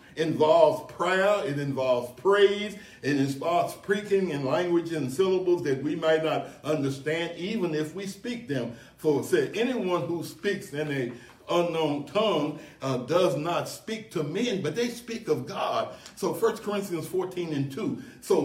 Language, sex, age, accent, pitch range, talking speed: English, male, 60-79, American, 150-195 Hz, 160 wpm